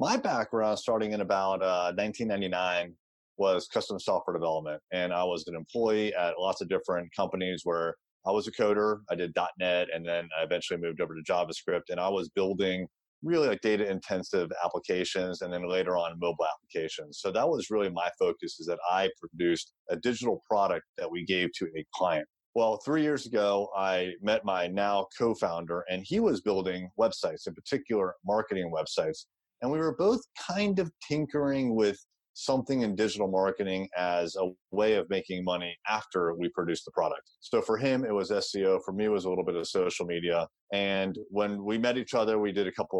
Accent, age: American, 30-49